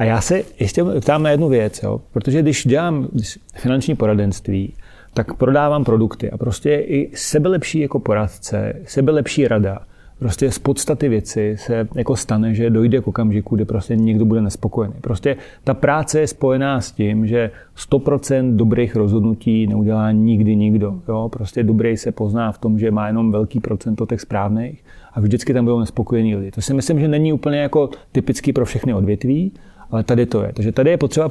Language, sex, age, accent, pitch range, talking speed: Czech, male, 40-59, native, 110-130 Hz, 180 wpm